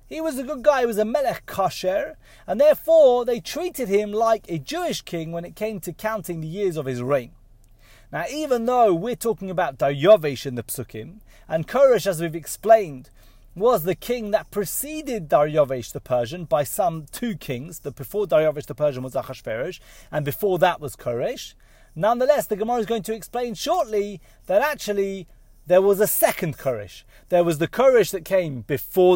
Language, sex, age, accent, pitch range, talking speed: English, male, 30-49, British, 145-235 Hz, 185 wpm